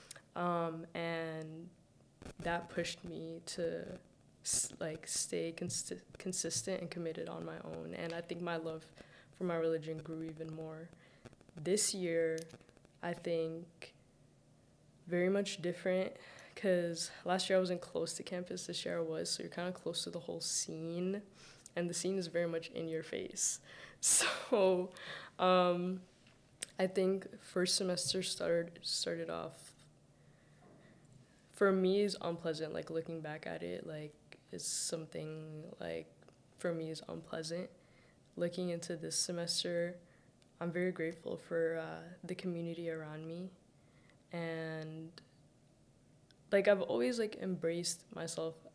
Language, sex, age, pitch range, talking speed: English, female, 20-39, 160-180 Hz, 135 wpm